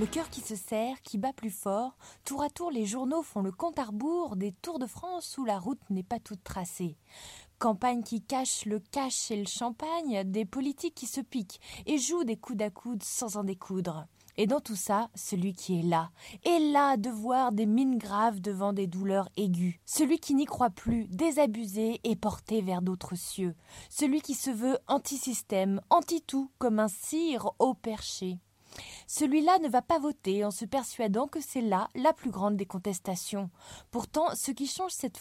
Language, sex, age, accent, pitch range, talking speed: French, female, 20-39, French, 205-275 Hz, 195 wpm